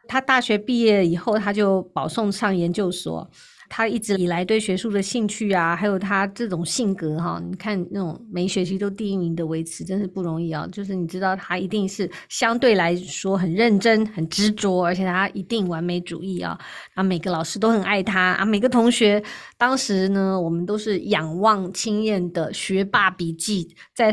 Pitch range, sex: 180-210 Hz, female